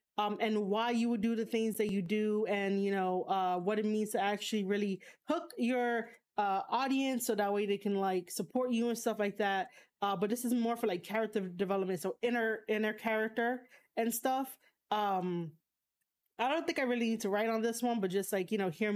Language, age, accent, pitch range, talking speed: English, 30-49, American, 200-240 Hz, 220 wpm